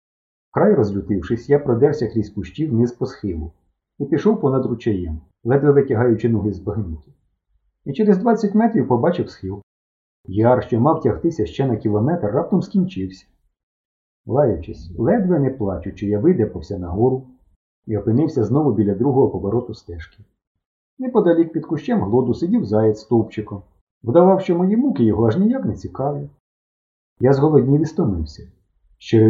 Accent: native